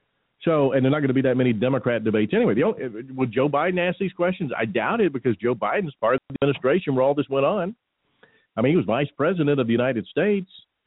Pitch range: 110-165 Hz